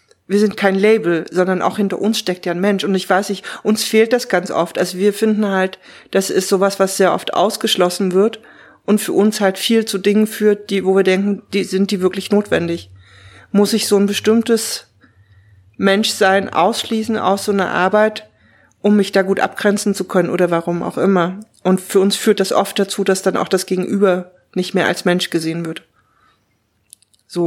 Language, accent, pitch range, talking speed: German, German, 180-210 Hz, 200 wpm